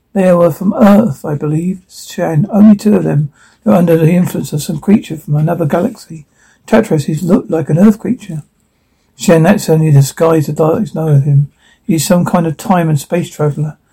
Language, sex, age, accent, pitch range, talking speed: English, male, 60-79, British, 160-200 Hz, 205 wpm